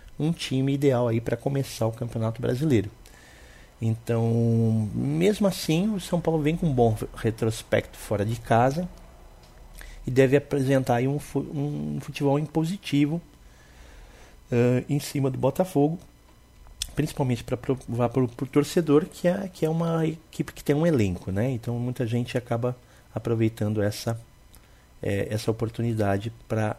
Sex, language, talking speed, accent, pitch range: male, Portuguese, 135 wpm, Brazilian, 100-135 Hz